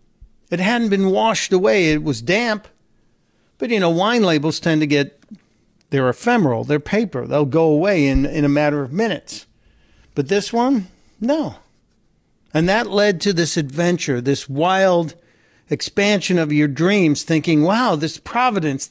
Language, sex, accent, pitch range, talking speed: English, male, American, 150-205 Hz, 155 wpm